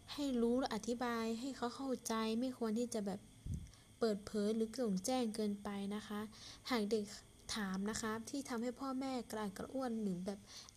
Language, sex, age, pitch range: Thai, female, 10-29, 205-260 Hz